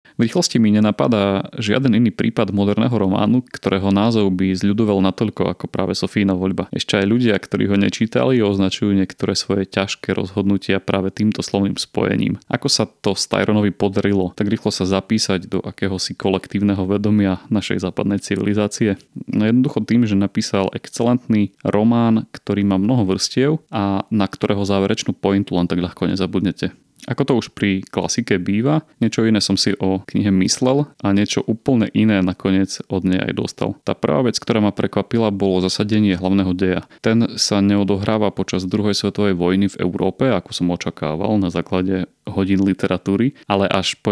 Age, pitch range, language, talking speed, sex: 30-49, 95-110 Hz, Slovak, 160 wpm, male